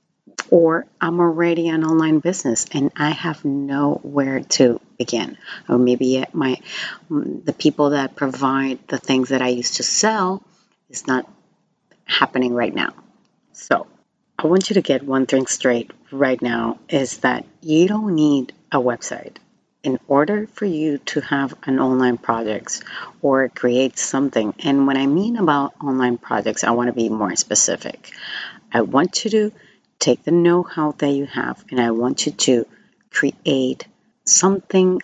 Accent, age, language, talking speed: American, 30-49, English, 155 wpm